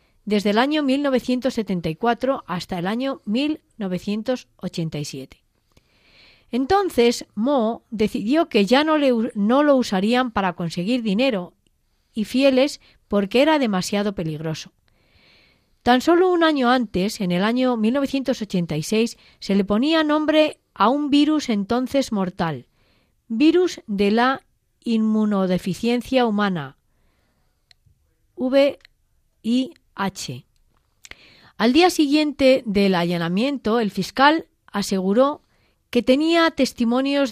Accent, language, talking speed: Spanish, Spanish, 100 wpm